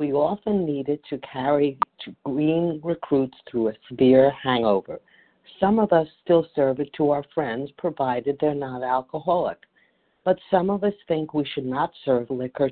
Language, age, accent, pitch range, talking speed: English, 50-69, American, 130-170 Hz, 165 wpm